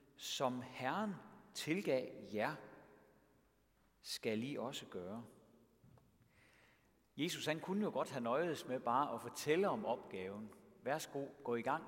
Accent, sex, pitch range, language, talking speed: native, male, 110-150 Hz, Danish, 125 wpm